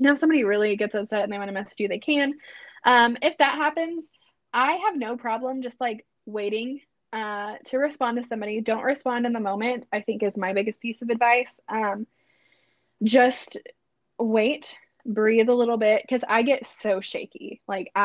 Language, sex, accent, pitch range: English, female, American, 210-250 Hz